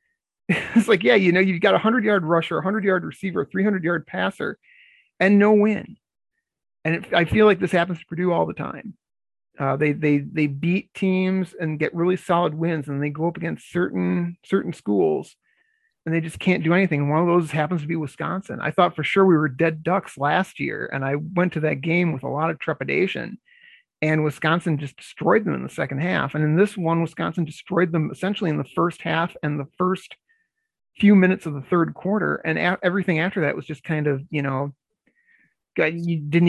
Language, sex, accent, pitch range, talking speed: English, male, American, 150-190 Hz, 215 wpm